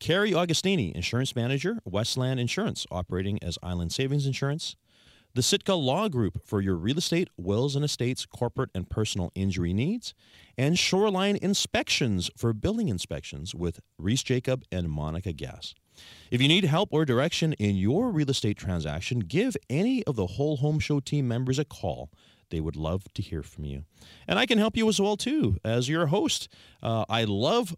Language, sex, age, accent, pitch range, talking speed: English, male, 40-59, American, 90-145 Hz, 175 wpm